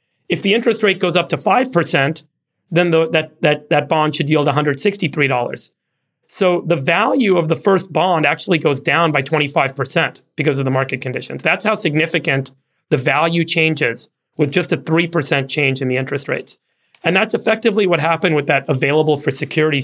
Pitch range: 140-170 Hz